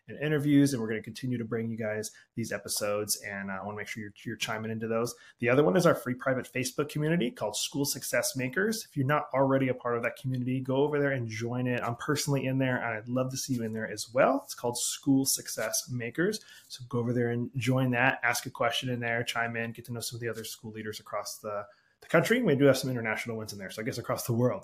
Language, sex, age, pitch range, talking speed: English, male, 20-39, 120-140 Hz, 275 wpm